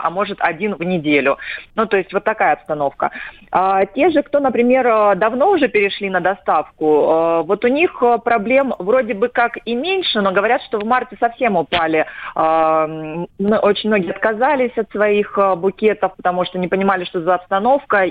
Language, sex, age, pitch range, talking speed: Russian, female, 30-49, 175-225 Hz, 170 wpm